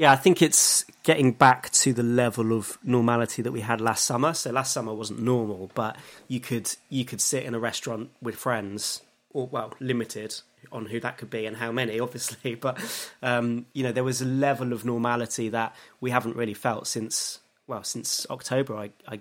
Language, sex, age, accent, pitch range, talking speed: English, male, 20-39, British, 115-135 Hz, 200 wpm